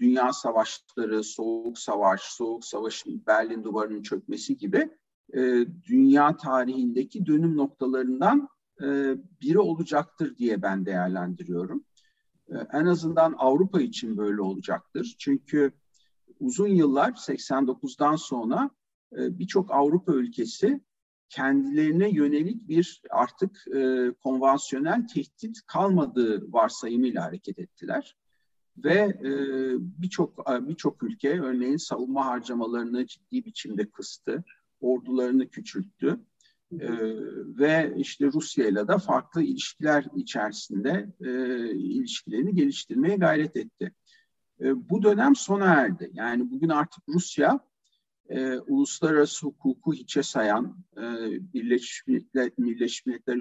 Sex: male